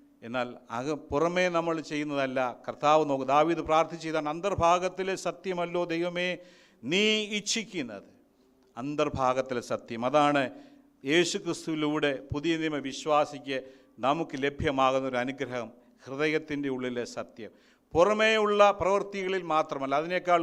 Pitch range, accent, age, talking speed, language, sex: 145-190 Hz, native, 50-69, 85 wpm, Malayalam, male